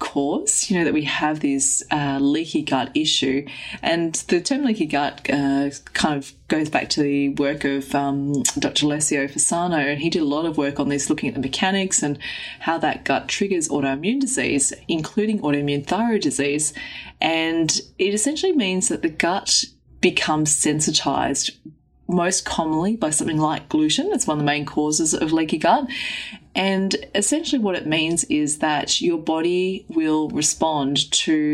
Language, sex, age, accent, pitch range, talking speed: English, female, 20-39, Australian, 145-210 Hz, 170 wpm